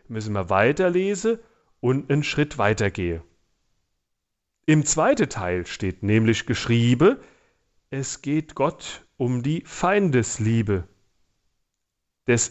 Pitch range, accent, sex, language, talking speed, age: 110-180 Hz, German, male, German, 95 wpm, 40-59